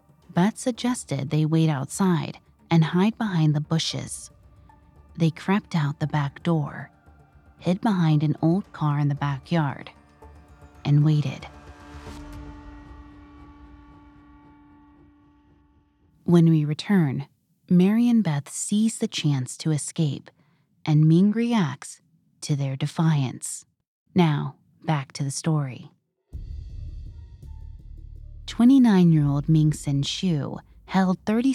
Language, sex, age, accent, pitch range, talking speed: English, female, 30-49, American, 135-180 Hz, 100 wpm